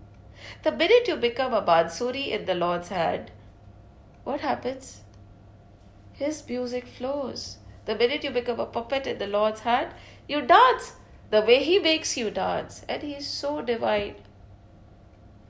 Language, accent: English, Indian